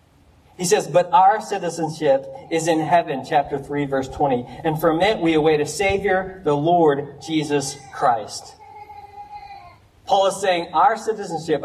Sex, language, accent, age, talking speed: male, English, American, 40-59, 145 wpm